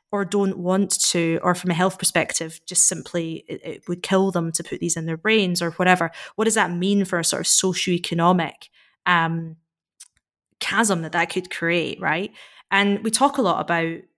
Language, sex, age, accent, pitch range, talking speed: English, female, 20-39, British, 170-195 Hz, 195 wpm